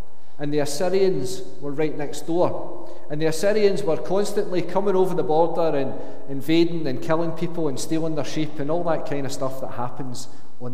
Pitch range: 140-185 Hz